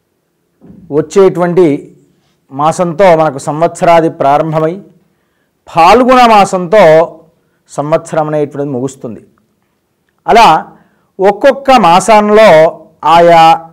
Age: 50-69